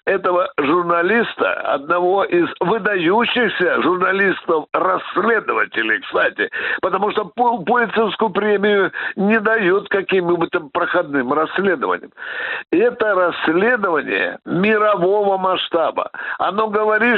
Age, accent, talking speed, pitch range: 60-79, native, 80 wpm, 180-230 Hz